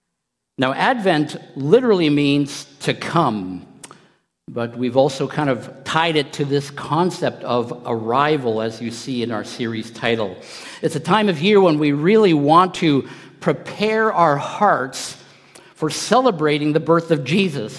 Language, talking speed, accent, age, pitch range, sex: English, 150 wpm, American, 50-69, 125-170 Hz, male